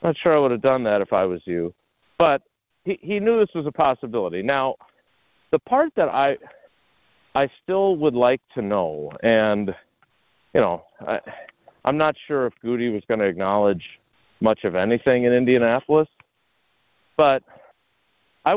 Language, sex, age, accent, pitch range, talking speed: English, male, 40-59, American, 100-140 Hz, 160 wpm